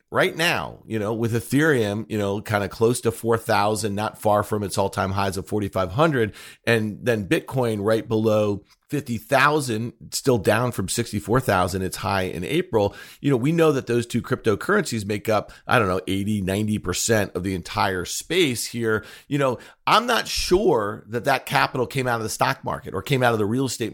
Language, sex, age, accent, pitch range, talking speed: English, male, 40-59, American, 100-130 Hz, 190 wpm